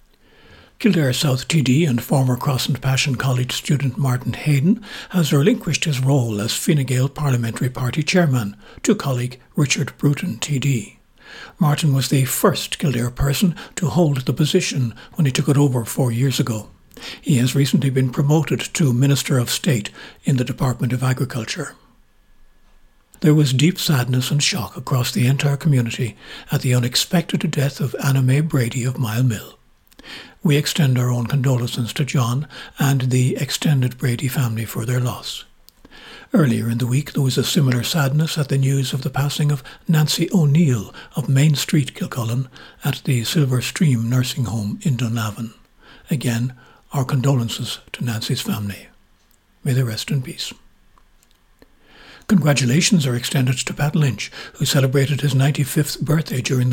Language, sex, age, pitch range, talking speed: English, male, 60-79, 125-150 Hz, 155 wpm